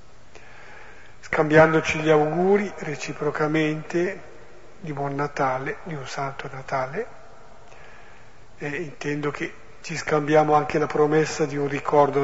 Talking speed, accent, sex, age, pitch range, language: 105 wpm, native, male, 50-69, 145-160 Hz, Italian